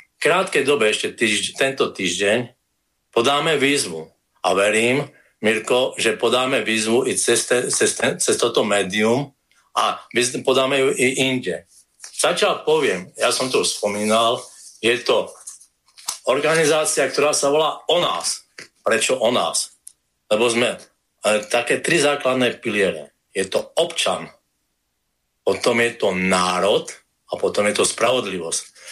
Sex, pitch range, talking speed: male, 100-145 Hz, 135 wpm